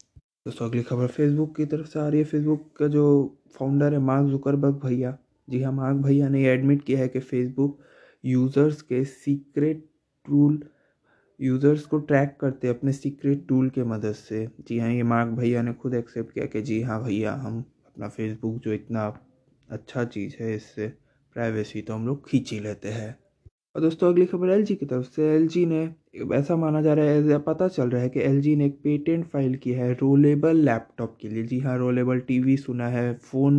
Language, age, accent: Hindi, 20-39, native